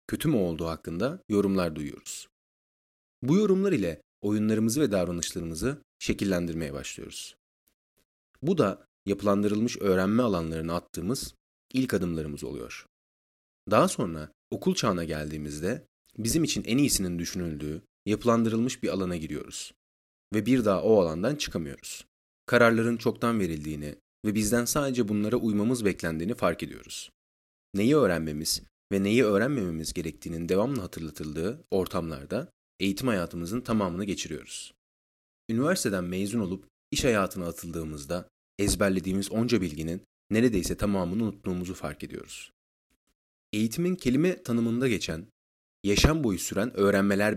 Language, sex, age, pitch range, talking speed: Turkish, male, 30-49, 80-110 Hz, 115 wpm